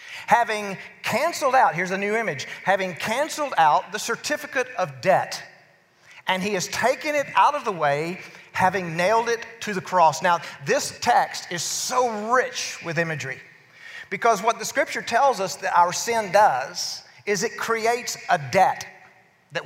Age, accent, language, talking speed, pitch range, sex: 40-59, American, English, 160 wpm, 175-220 Hz, male